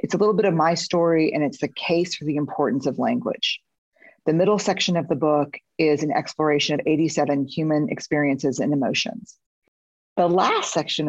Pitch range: 150-175 Hz